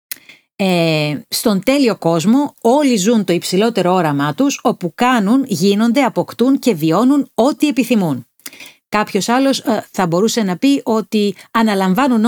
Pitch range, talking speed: 185-245 Hz, 120 wpm